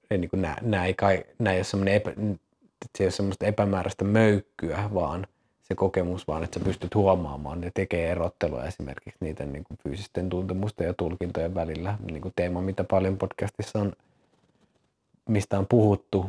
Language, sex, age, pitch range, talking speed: Finnish, male, 20-39, 85-100 Hz, 125 wpm